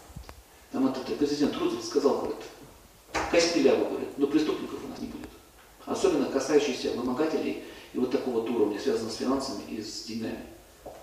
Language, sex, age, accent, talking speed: Russian, male, 40-59, native, 145 wpm